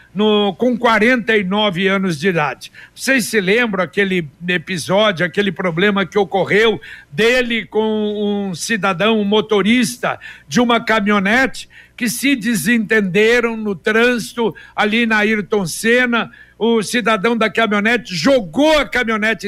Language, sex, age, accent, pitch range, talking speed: Portuguese, male, 60-79, Brazilian, 195-235 Hz, 125 wpm